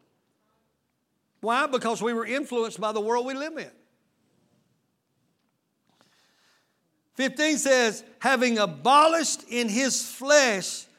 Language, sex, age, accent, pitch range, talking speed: English, male, 60-79, American, 225-290 Hz, 100 wpm